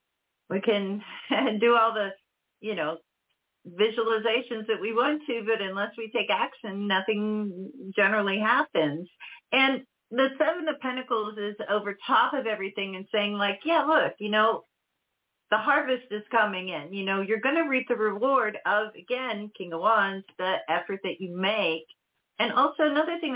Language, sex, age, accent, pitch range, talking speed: English, female, 40-59, American, 175-230 Hz, 165 wpm